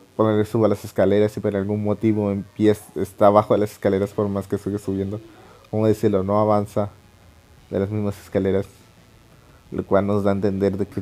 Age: 30-49